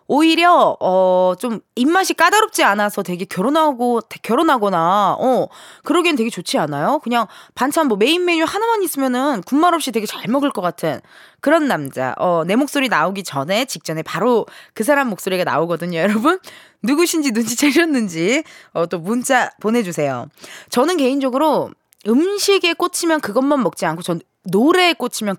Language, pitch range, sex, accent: Korean, 190-310 Hz, female, native